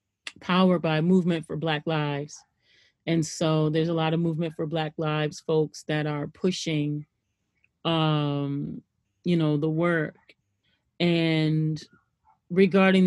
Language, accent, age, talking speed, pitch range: English, American, 30-49, 125 wpm, 155-180 Hz